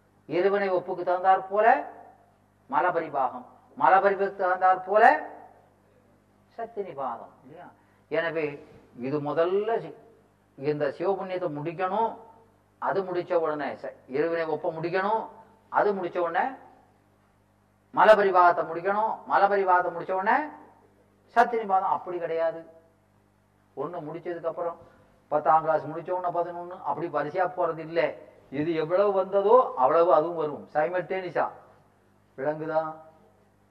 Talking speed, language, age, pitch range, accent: 100 wpm, Tamil, 40-59, 105-180 Hz, native